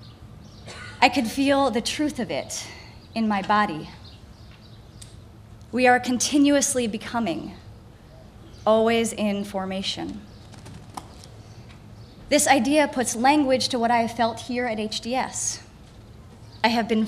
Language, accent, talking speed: English, American, 110 wpm